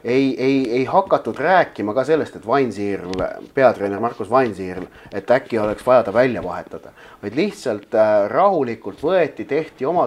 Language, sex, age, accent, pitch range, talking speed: English, male, 30-49, Finnish, 105-140 Hz, 135 wpm